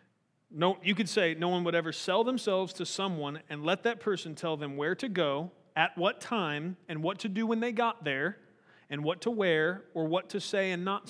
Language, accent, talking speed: English, American, 225 wpm